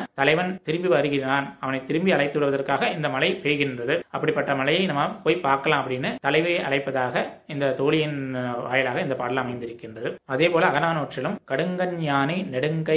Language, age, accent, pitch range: Tamil, 20-39, native, 135-170 Hz